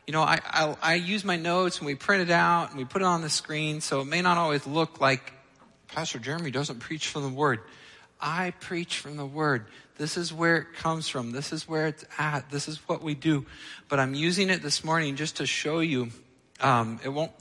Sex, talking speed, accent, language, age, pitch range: male, 235 wpm, American, English, 50-69, 135-175 Hz